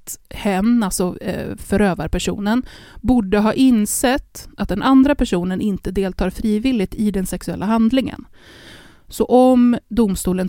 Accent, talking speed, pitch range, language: native, 115 wpm, 185-240 Hz, Swedish